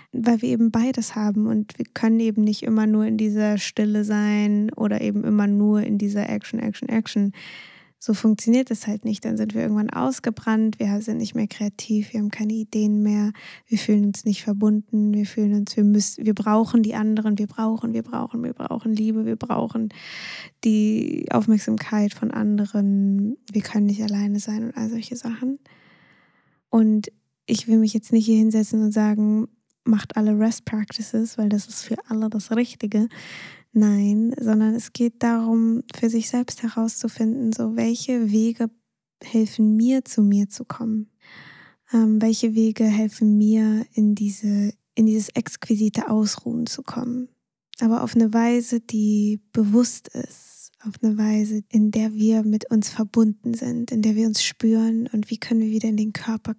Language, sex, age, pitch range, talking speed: German, female, 10-29, 210-230 Hz, 175 wpm